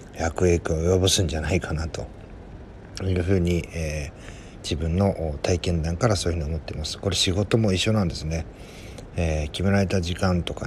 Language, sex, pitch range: Japanese, male, 80-100 Hz